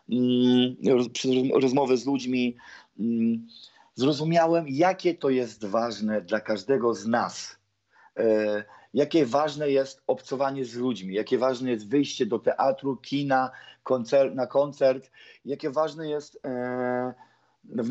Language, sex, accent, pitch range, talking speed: Polish, male, native, 125-150 Hz, 105 wpm